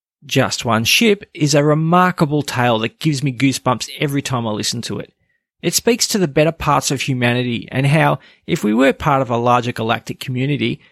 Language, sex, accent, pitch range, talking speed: English, male, Australian, 120-155 Hz, 200 wpm